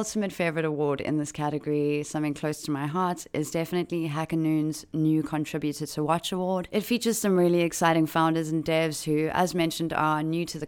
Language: English